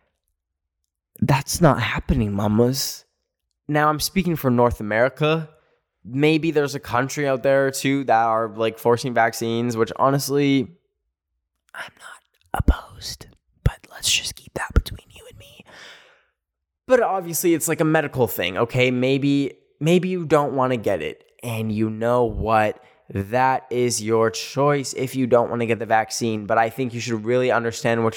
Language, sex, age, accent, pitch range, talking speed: English, male, 10-29, American, 115-140 Hz, 160 wpm